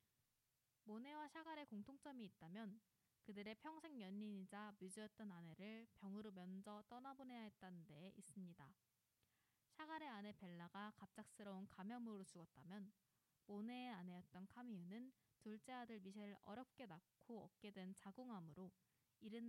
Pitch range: 190-250 Hz